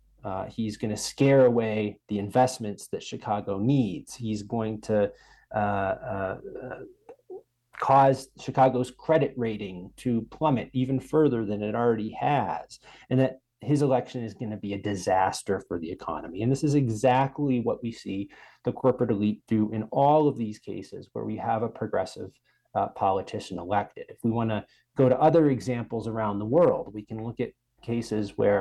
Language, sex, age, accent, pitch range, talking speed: English, male, 30-49, American, 105-130 Hz, 170 wpm